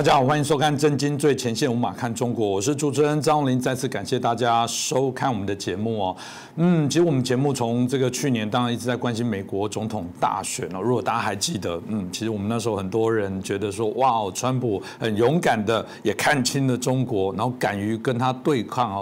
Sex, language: male, Chinese